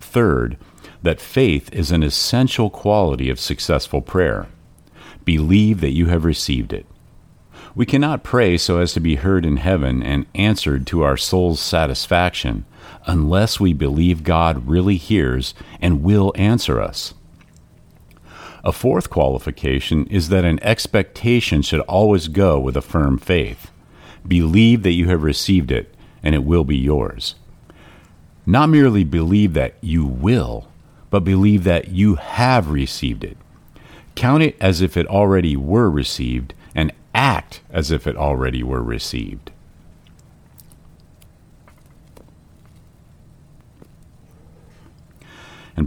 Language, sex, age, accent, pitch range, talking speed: English, male, 50-69, American, 75-100 Hz, 125 wpm